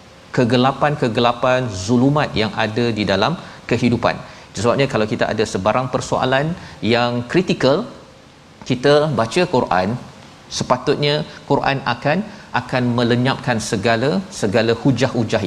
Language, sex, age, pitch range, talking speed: Malayalam, male, 40-59, 110-135 Hz, 100 wpm